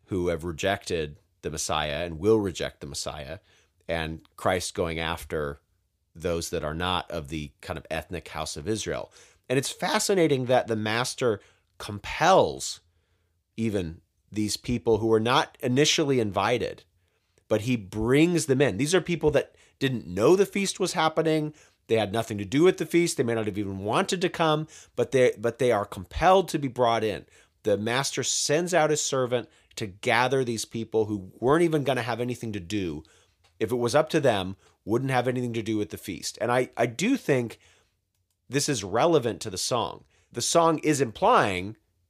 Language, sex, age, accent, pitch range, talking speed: English, male, 40-59, American, 95-135 Hz, 185 wpm